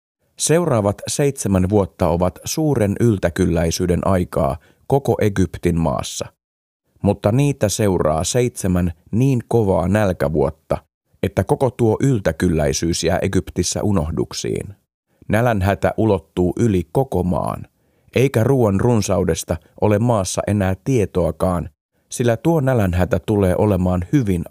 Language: Finnish